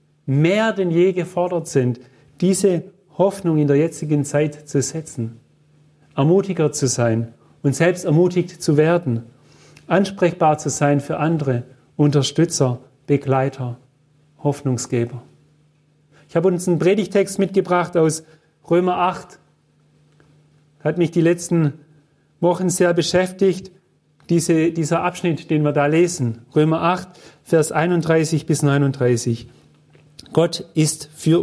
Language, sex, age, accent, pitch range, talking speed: German, male, 40-59, German, 145-175 Hz, 120 wpm